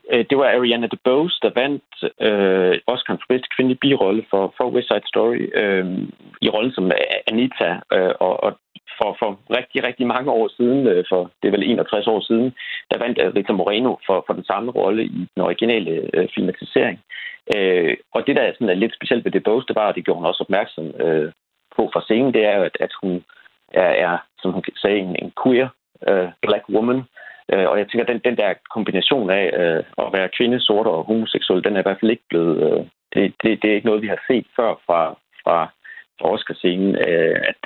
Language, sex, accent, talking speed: Danish, male, native, 205 wpm